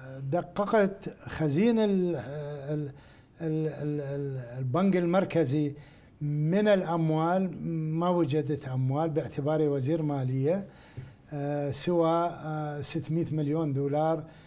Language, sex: Arabic, male